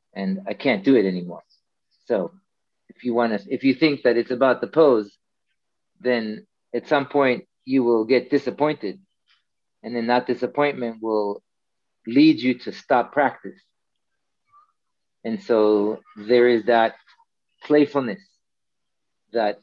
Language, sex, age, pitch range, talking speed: English, male, 40-59, 115-145 Hz, 135 wpm